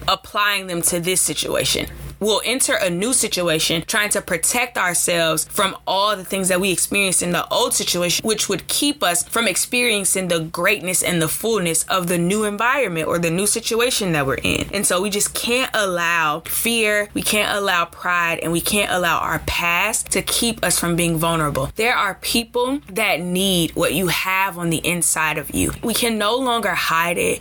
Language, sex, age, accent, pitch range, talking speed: English, female, 20-39, American, 175-225 Hz, 195 wpm